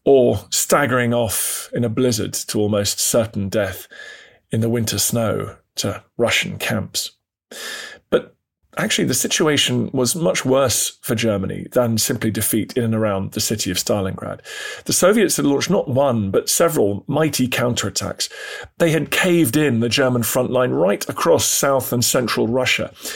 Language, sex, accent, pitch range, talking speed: English, male, British, 115-140 Hz, 155 wpm